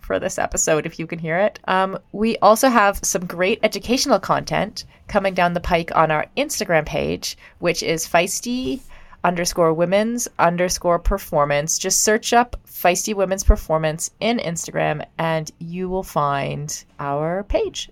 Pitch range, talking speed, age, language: 160-195 Hz, 150 wpm, 30-49, English